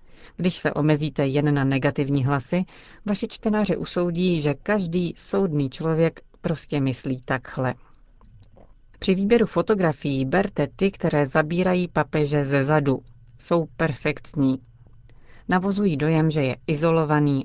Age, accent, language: 40-59, native, Czech